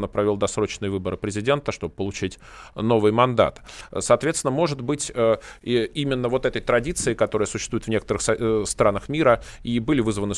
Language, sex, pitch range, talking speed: Russian, male, 110-140 Hz, 150 wpm